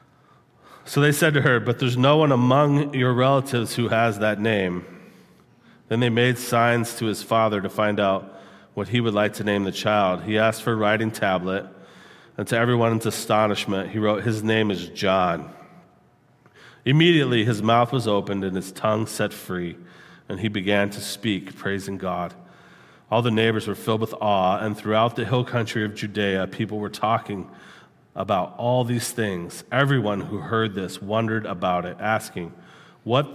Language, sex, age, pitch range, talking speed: English, male, 40-59, 100-125 Hz, 175 wpm